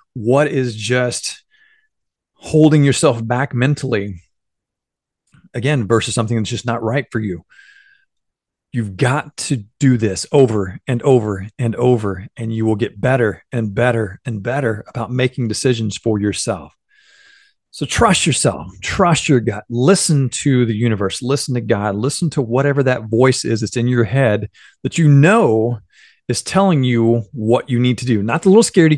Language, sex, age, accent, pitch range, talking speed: English, male, 40-59, American, 110-150 Hz, 160 wpm